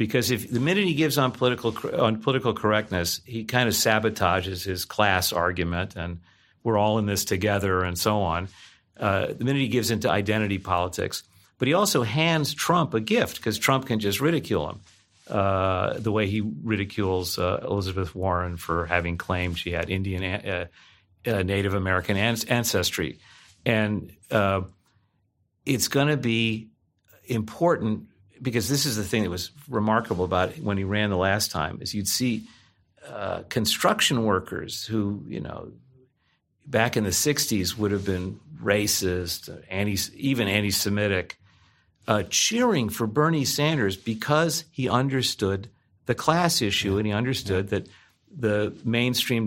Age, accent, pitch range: 50-69, American, 95-120 Hz